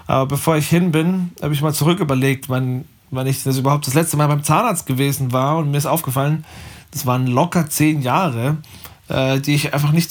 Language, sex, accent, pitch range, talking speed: German, male, German, 135-160 Hz, 210 wpm